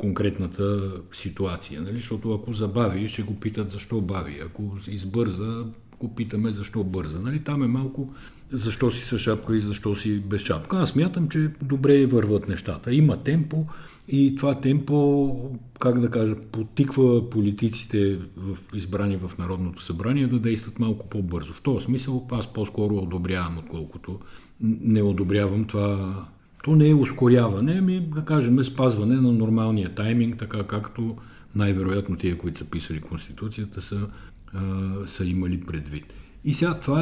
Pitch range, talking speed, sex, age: 100-130 Hz, 150 wpm, male, 50-69